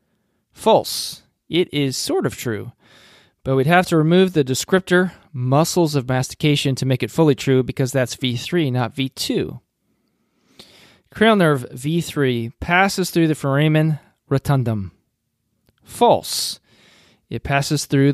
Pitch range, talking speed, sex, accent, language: 125-155 Hz, 125 wpm, male, American, English